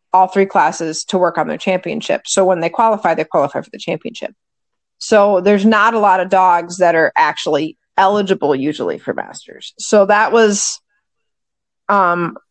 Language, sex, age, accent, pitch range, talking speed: English, female, 30-49, American, 180-215 Hz, 170 wpm